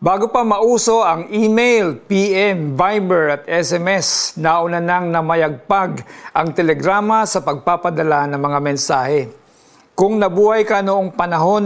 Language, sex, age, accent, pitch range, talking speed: Filipino, male, 50-69, native, 165-200 Hz, 125 wpm